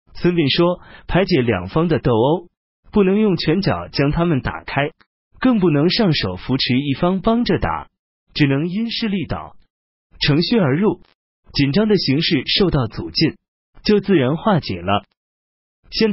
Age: 30-49